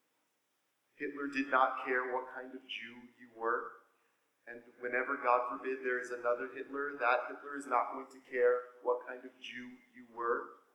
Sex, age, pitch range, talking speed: male, 40-59, 130-155 Hz, 175 wpm